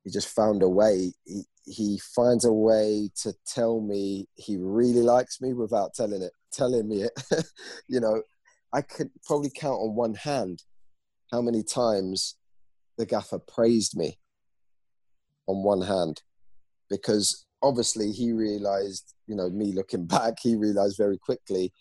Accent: British